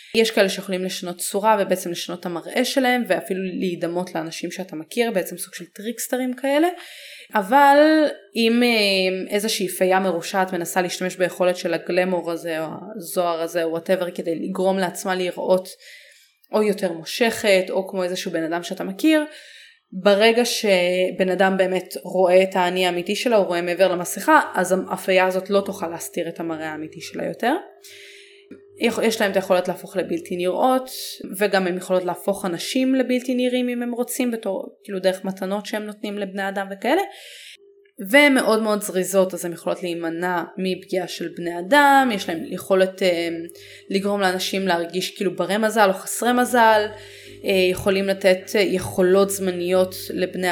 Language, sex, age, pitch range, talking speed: Hebrew, female, 20-39, 180-225 Hz, 155 wpm